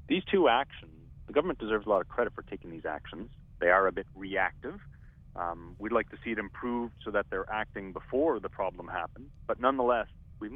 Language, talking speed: English, 210 wpm